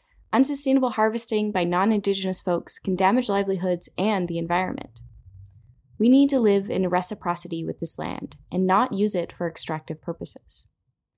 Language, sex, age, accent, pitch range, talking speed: English, female, 10-29, American, 170-230 Hz, 145 wpm